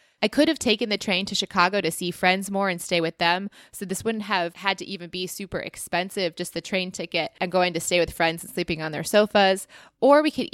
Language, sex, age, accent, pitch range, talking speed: English, female, 20-39, American, 180-220 Hz, 250 wpm